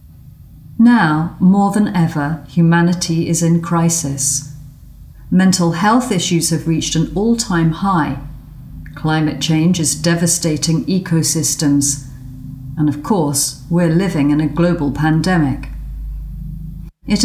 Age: 40-59